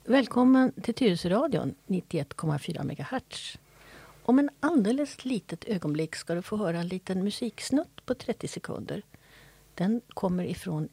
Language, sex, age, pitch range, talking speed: Swedish, female, 50-69, 165-235 Hz, 125 wpm